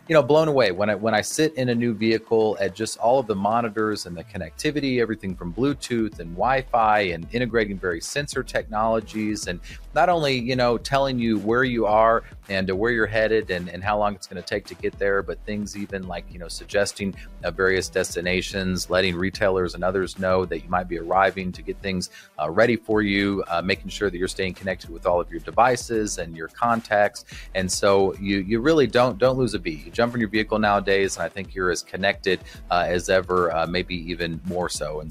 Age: 40-59